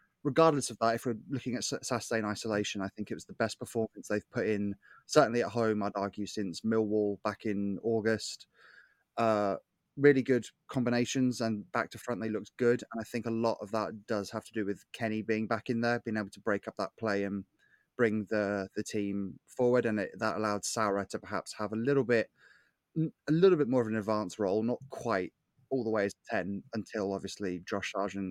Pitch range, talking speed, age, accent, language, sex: 105-120 Hz, 215 wpm, 20-39, British, English, male